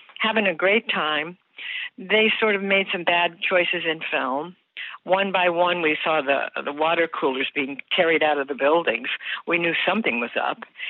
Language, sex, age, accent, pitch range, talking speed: English, female, 60-79, American, 155-220 Hz, 180 wpm